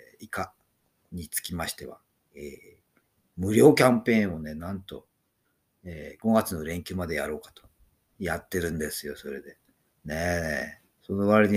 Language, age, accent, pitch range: Japanese, 50-69, native, 85-125 Hz